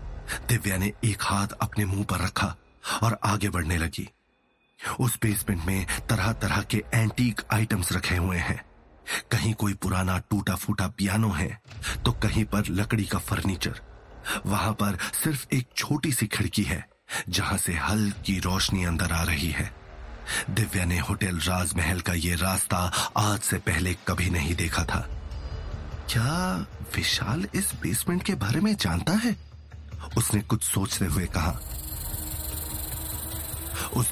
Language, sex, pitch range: Hindi, male, 85-110 Hz